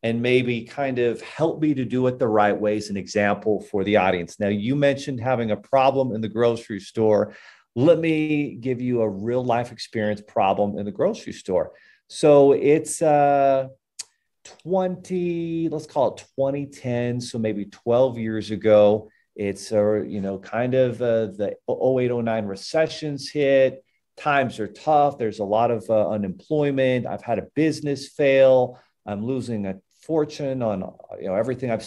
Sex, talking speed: male, 165 wpm